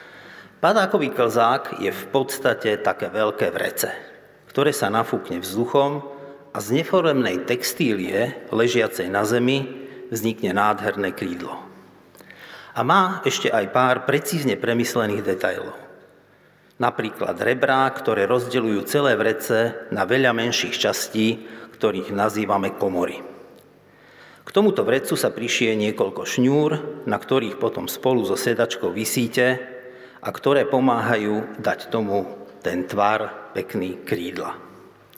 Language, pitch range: Slovak, 110-130 Hz